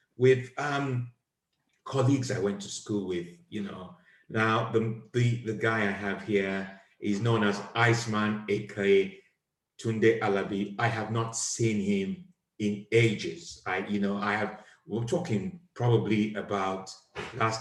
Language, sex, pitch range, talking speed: English, male, 105-125 Hz, 145 wpm